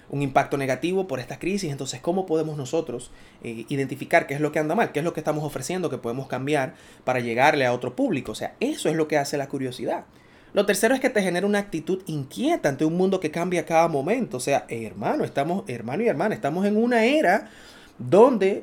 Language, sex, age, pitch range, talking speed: Spanish, male, 20-39, 140-215 Hz, 225 wpm